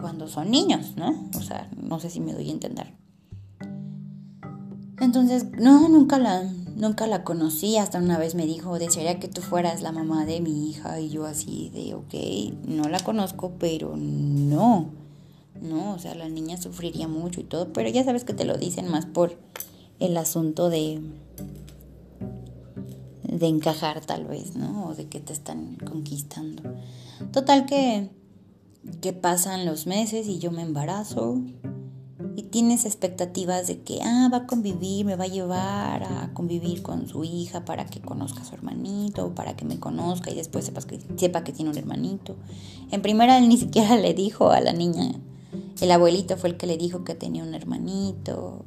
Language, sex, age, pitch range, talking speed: Spanish, female, 20-39, 150-190 Hz, 180 wpm